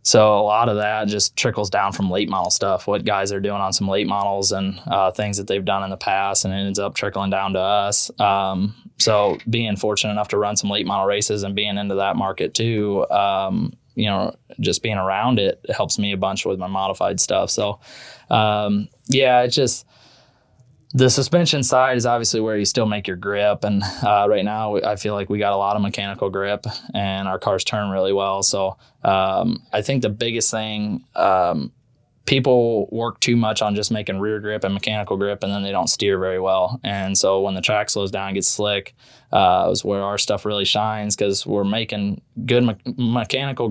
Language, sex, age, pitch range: English, male, 20-39, 100-110 Hz